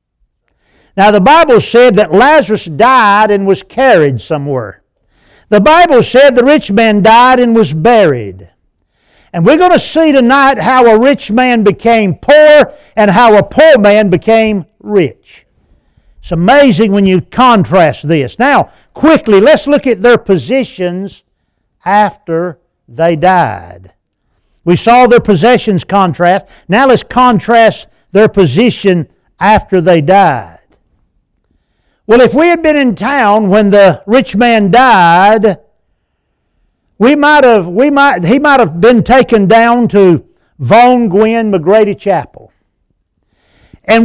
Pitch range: 180-265 Hz